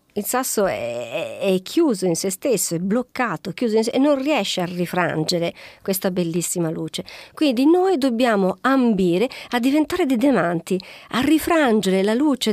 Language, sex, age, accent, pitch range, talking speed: Italian, female, 50-69, native, 185-275 Hz, 165 wpm